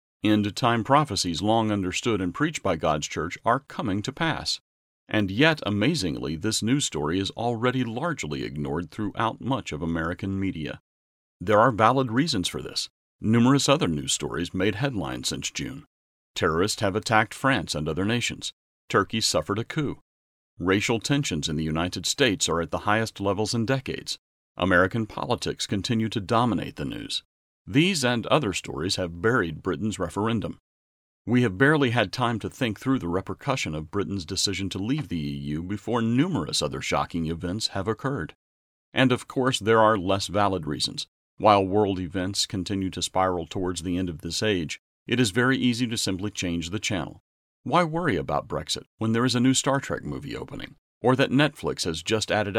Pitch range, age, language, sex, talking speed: 90-120 Hz, 40-59, English, male, 175 wpm